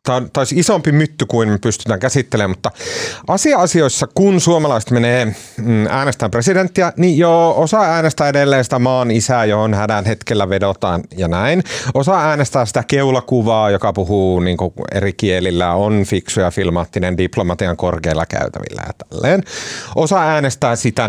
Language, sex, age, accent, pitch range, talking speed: Finnish, male, 30-49, native, 105-150 Hz, 140 wpm